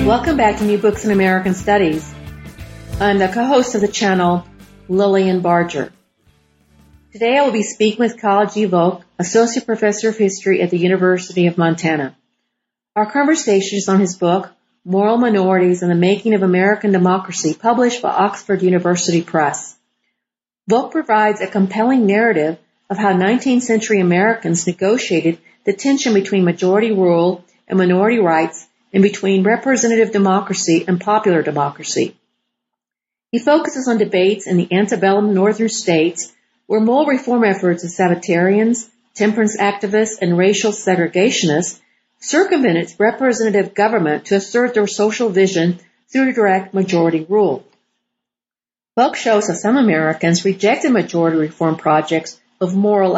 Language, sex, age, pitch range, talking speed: English, female, 50-69, 175-215 Hz, 140 wpm